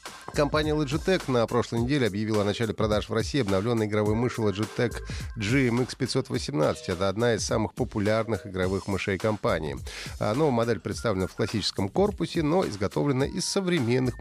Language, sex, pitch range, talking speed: Russian, male, 95-130 Hz, 150 wpm